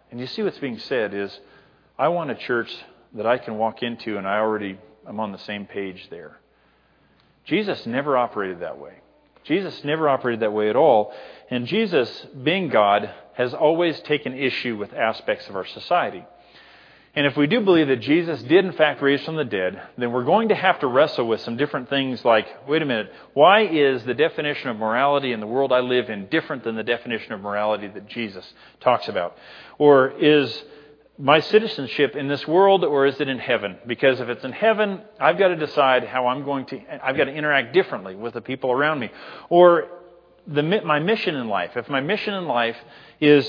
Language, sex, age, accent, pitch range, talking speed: English, male, 40-59, American, 110-150 Hz, 205 wpm